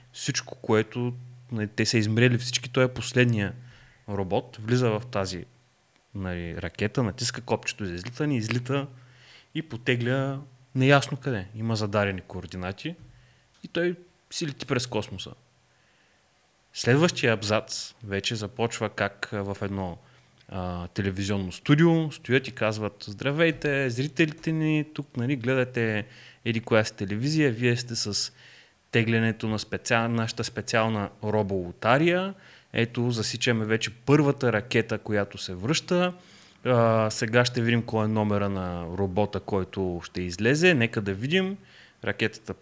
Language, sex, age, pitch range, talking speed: Bulgarian, male, 30-49, 100-130 Hz, 125 wpm